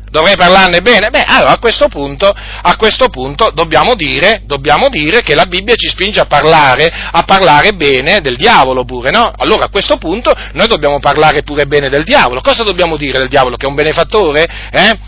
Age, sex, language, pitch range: 40-59, male, Italian, 150-230 Hz